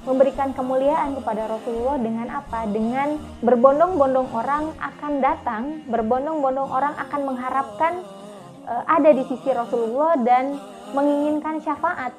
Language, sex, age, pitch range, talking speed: Indonesian, female, 20-39, 235-290 Hz, 110 wpm